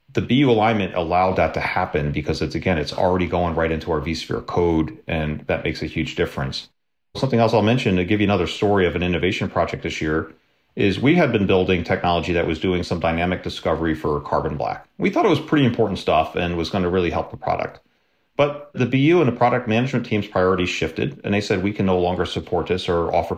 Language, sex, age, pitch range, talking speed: English, male, 40-59, 90-130 Hz, 230 wpm